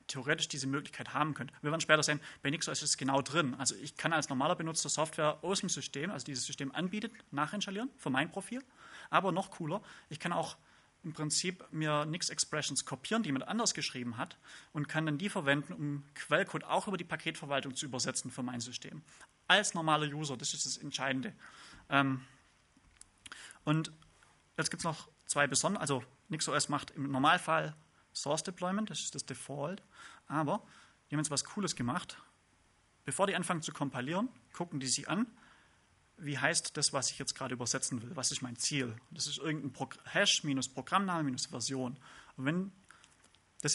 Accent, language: German, German